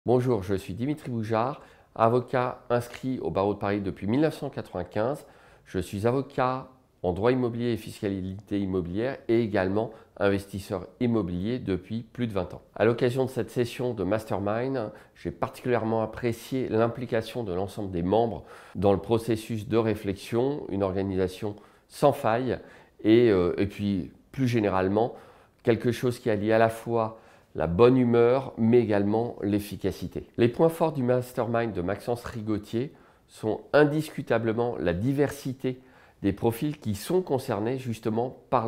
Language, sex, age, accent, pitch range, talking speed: French, male, 40-59, French, 100-120 Hz, 145 wpm